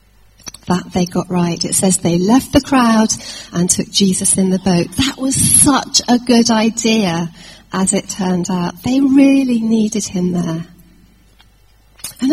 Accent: British